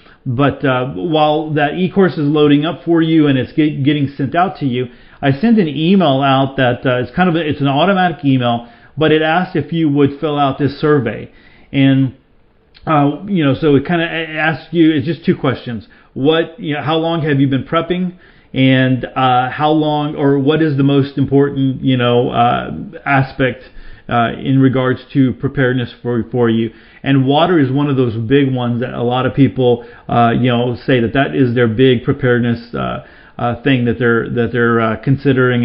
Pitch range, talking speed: 120-145 Hz, 200 wpm